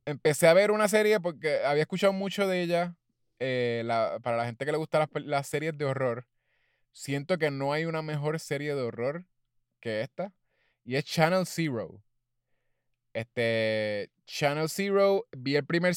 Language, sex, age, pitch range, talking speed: Spanish, male, 20-39, 120-165 Hz, 170 wpm